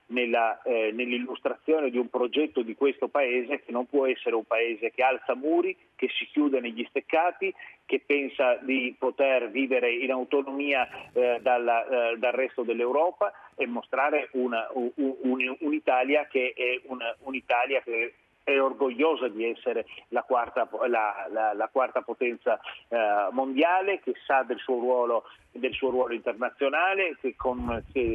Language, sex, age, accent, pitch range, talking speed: Italian, male, 40-59, native, 120-150 Hz, 150 wpm